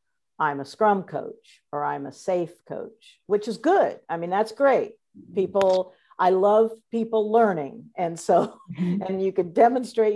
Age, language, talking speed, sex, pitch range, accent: 50-69, English, 160 wpm, female, 160-210 Hz, American